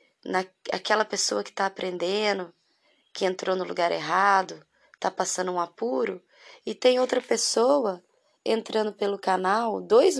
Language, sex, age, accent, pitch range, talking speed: Portuguese, female, 20-39, Brazilian, 180-250 Hz, 130 wpm